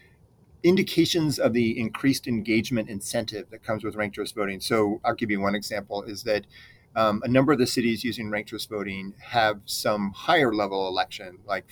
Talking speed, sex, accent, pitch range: 185 wpm, male, American, 105-125 Hz